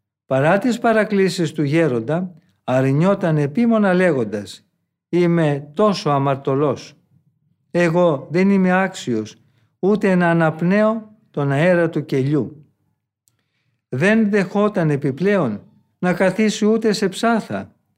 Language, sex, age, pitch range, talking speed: Greek, male, 50-69, 145-195 Hz, 100 wpm